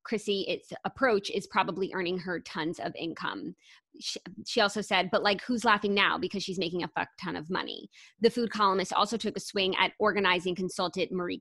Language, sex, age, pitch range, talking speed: English, female, 20-39, 185-230 Hz, 200 wpm